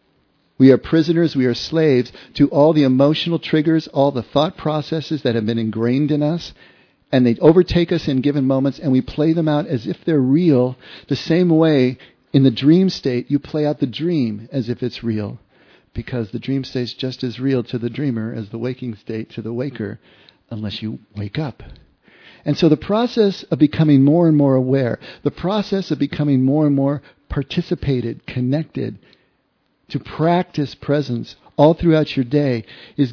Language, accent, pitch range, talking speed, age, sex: English, American, 120-155 Hz, 185 wpm, 50-69, male